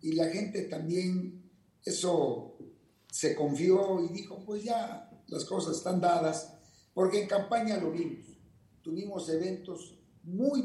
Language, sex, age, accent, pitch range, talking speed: Spanish, male, 50-69, Mexican, 150-185 Hz, 130 wpm